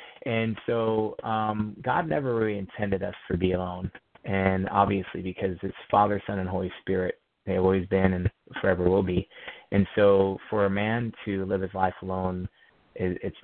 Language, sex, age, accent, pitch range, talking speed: English, male, 30-49, American, 90-100 Hz, 170 wpm